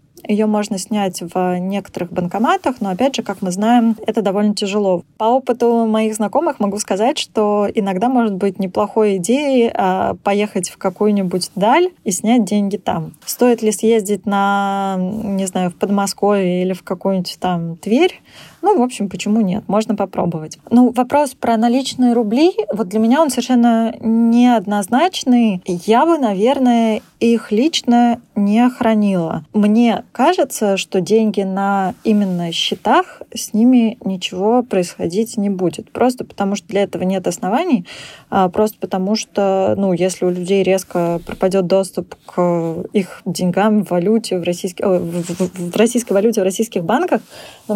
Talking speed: 150 wpm